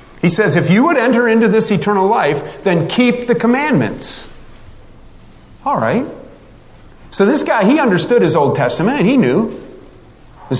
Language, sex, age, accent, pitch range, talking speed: English, male, 40-59, American, 175-290 Hz, 160 wpm